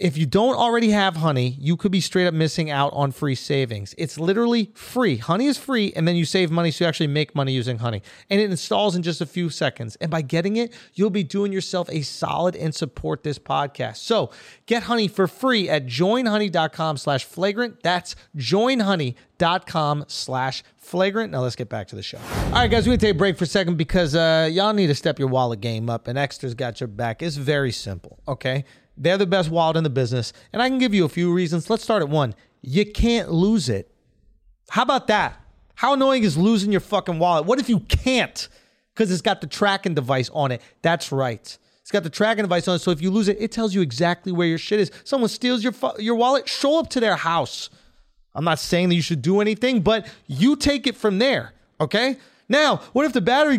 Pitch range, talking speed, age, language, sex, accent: 150-225 Hz, 230 wpm, 30-49, English, male, American